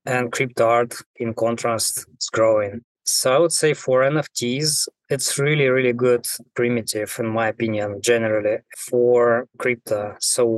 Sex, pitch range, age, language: male, 115-130 Hz, 20-39, English